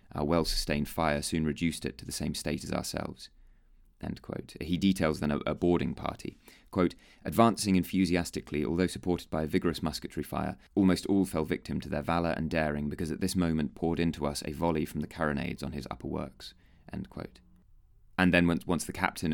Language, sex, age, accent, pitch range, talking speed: English, male, 30-49, British, 75-90 Hz, 195 wpm